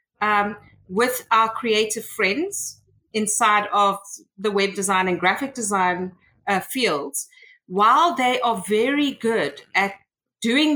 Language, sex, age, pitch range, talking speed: English, female, 40-59, 200-235 Hz, 125 wpm